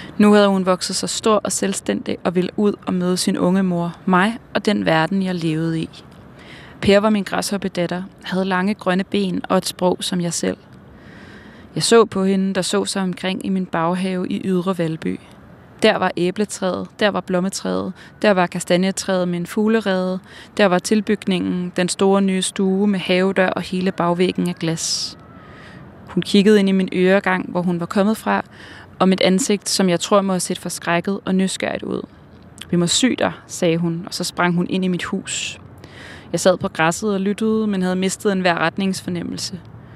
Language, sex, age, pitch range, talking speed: Danish, female, 20-39, 175-195 Hz, 190 wpm